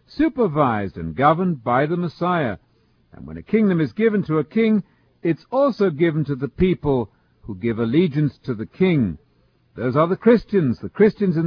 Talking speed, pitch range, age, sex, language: 180 wpm, 120-170 Hz, 50-69, male, English